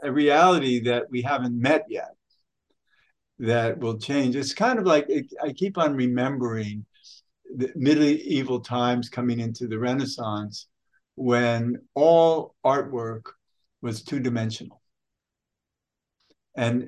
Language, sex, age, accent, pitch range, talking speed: English, male, 60-79, American, 120-180 Hz, 115 wpm